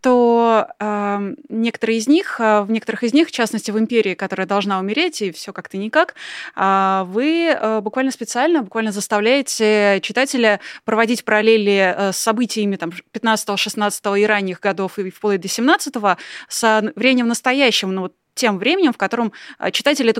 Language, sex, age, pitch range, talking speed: Russian, female, 20-39, 200-250 Hz, 160 wpm